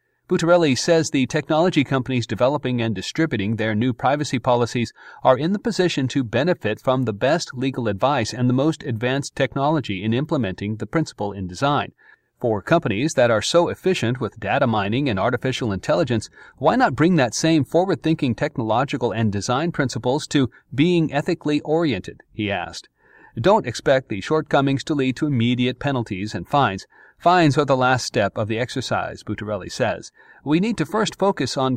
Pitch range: 120-155 Hz